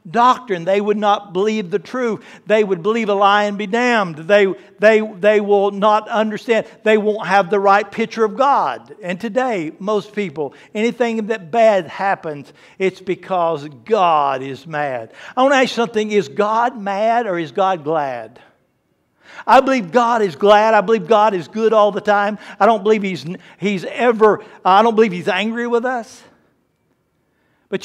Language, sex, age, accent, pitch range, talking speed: English, male, 60-79, American, 195-225 Hz, 175 wpm